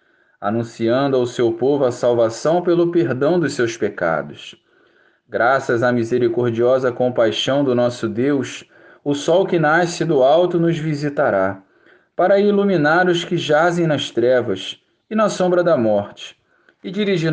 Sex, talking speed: male, 140 wpm